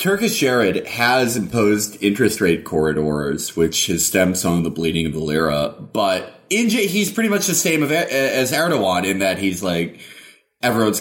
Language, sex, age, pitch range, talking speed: English, male, 20-39, 90-135 Hz, 175 wpm